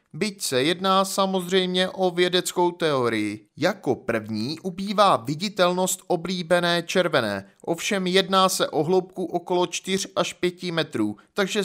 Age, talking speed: 30-49, 125 wpm